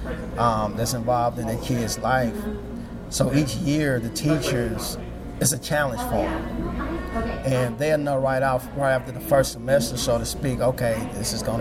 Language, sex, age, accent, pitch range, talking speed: English, male, 30-49, American, 115-140 Hz, 175 wpm